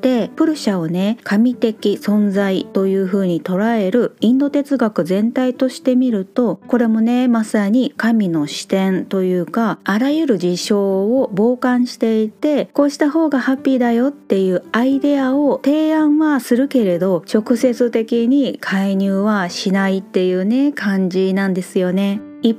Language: Japanese